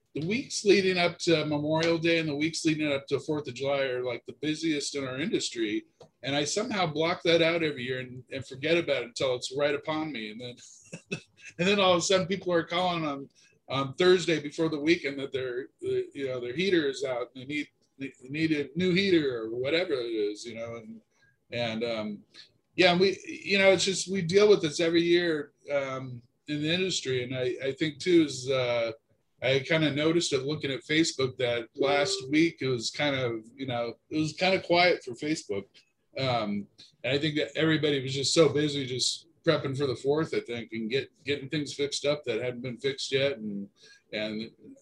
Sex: male